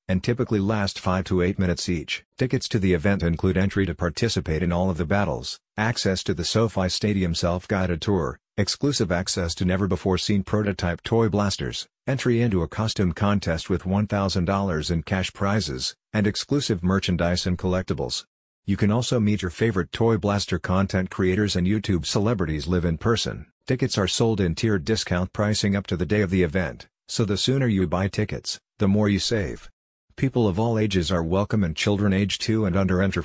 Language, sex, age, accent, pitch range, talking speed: English, male, 50-69, American, 90-105 Hz, 190 wpm